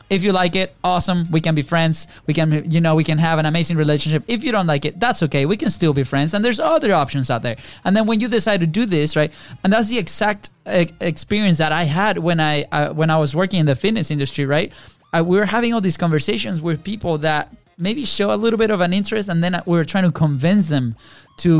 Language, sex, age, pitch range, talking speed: English, male, 20-39, 150-185 Hz, 260 wpm